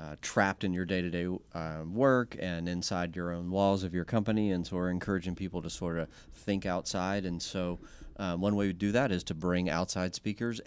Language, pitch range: English, 90-105 Hz